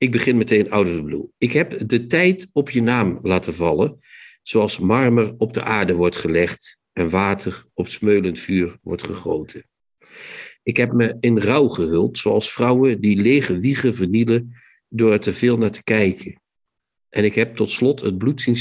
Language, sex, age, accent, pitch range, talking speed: Dutch, male, 50-69, Dutch, 95-120 Hz, 175 wpm